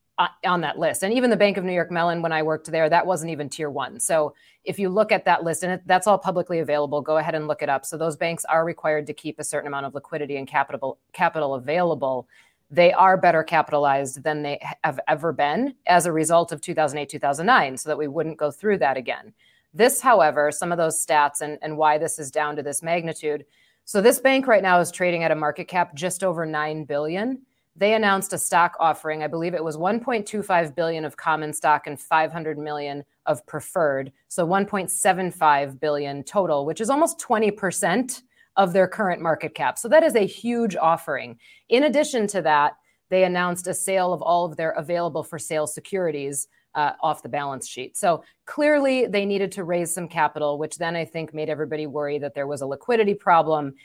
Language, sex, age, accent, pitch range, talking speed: English, female, 30-49, American, 150-185 Hz, 205 wpm